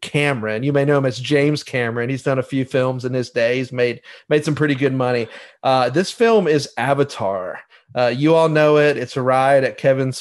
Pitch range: 125-155 Hz